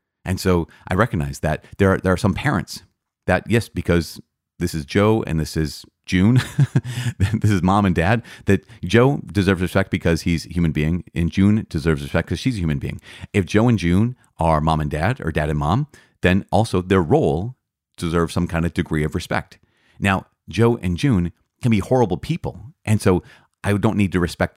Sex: male